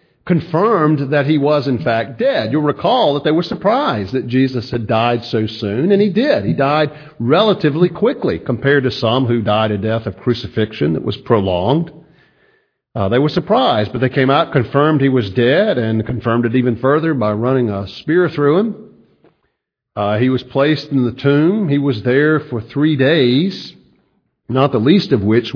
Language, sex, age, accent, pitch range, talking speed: English, male, 50-69, American, 110-150 Hz, 185 wpm